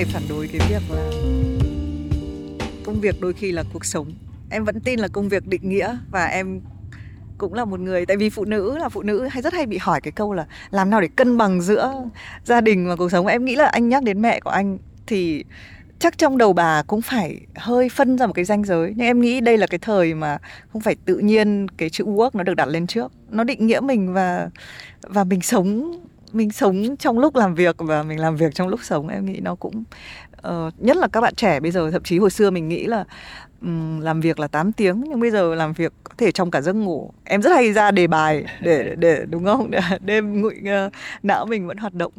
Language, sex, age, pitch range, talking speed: Vietnamese, female, 20-39, 165-220 Hz, 245 wpm